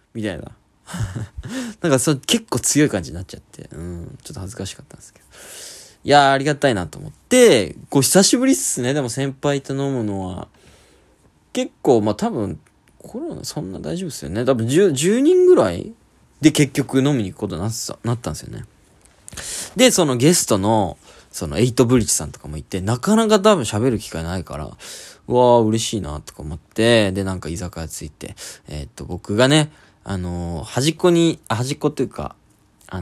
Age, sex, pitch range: 20-39, male, 95-145 Hz